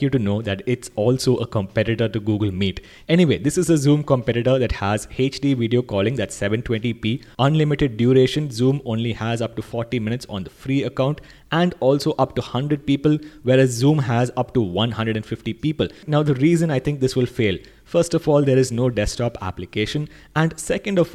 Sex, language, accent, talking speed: male, English, Indian, 195 wpm